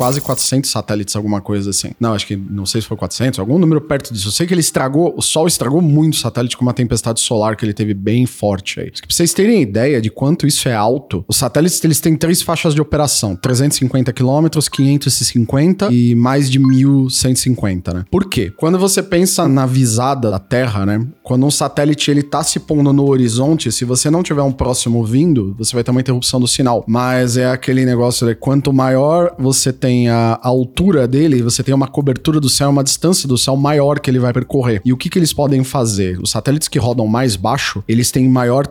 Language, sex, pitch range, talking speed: Portuguese, male, 120-145 Hz, 220 wpm